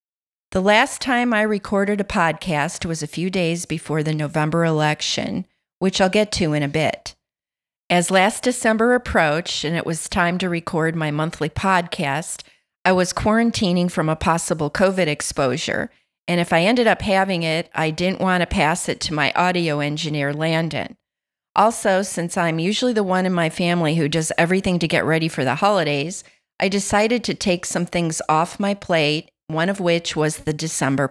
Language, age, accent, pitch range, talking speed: English, 40-59, American, 160-190 Hz, 180 wpm